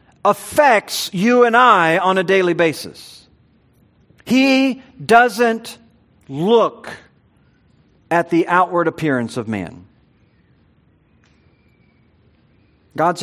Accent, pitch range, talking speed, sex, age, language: American, 130-165 Hz, 80 wpm, male, 50-69, English